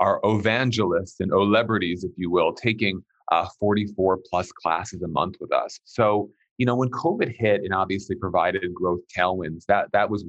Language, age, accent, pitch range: English, 30-49, American, 100-125 Hz